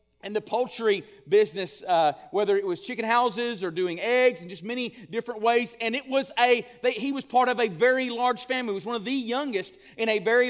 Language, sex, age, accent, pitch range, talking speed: English, male, 40-59, American, 200-260 Hz, 225 wpm